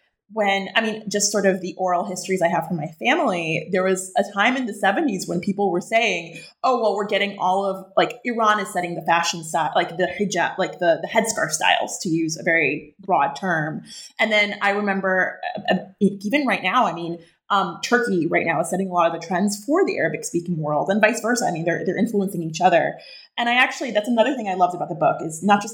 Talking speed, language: 235 wpm, English